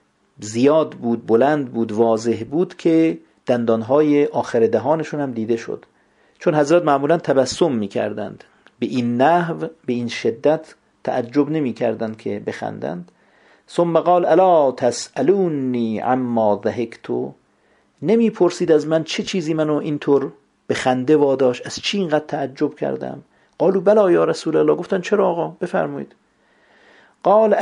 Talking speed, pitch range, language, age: 125 wpm, 125-170 Hz, Persian, 50-69